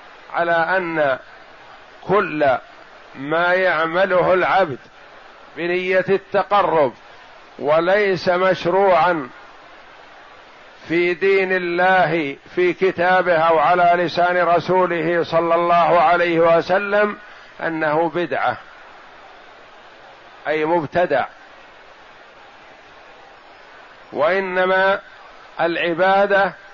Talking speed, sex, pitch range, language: 65 wpm, male, 160-185 Hz, Arabic